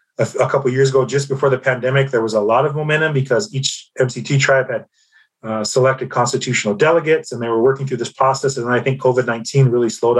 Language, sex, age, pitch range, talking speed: English, male, 30-49, 120-140 Hz, 225 wpm